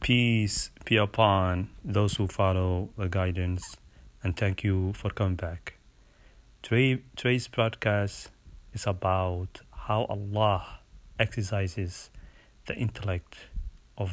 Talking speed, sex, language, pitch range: 100 wpm, male, English, 95-115 Hz